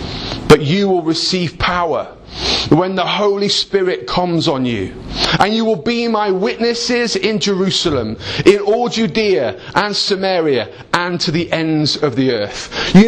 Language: English